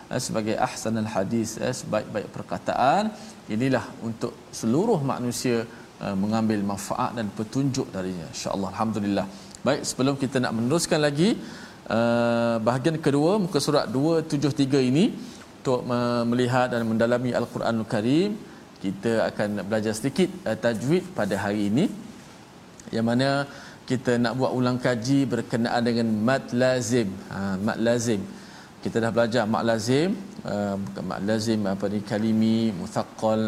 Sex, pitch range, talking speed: male, 110-130 Hz, 120 wpm